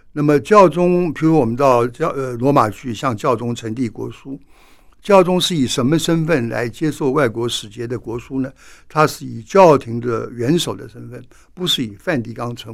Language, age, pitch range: Chinese, 60-79, 115-155 Hz